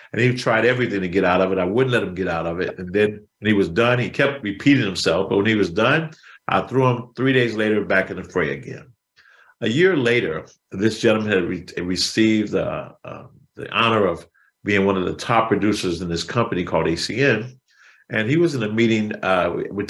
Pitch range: 95-120 Hz